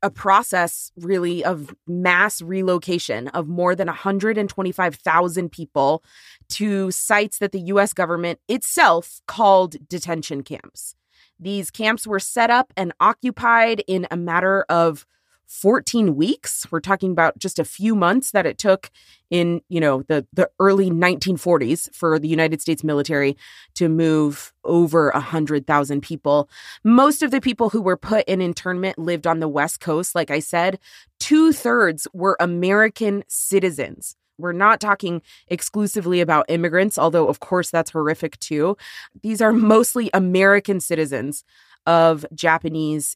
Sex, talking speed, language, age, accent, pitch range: female, 140 wpm, English, 20-39, American, 160-200 Hz